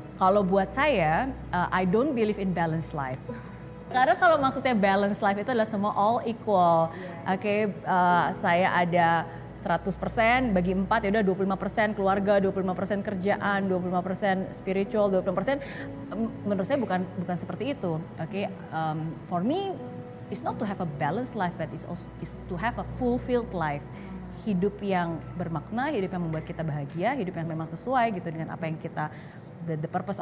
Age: 20-39